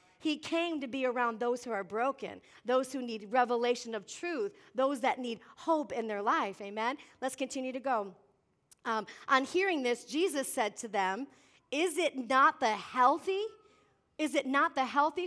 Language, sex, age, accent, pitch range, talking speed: English, female, 40-59, American, 255-335 Hz, 175 wpm